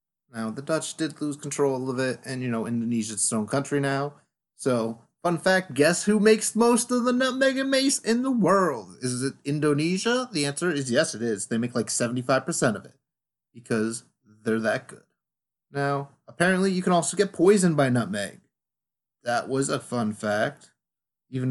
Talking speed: 180 wpm